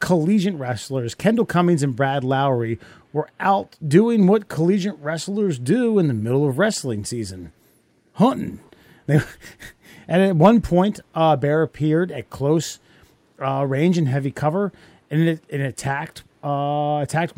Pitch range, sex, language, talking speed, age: 135-175 Hz, male, English, 140 wpm, 30-49